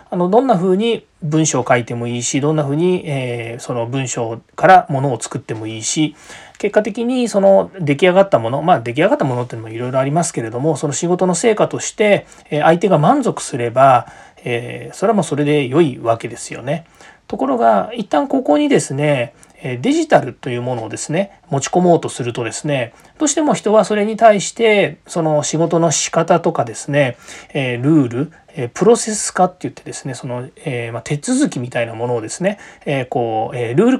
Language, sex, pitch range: Japanese, male, 130-200 Hz